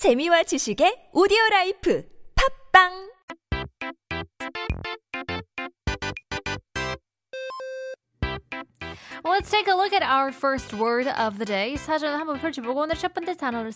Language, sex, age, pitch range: Korean, female, 20-39, 195-310 Hz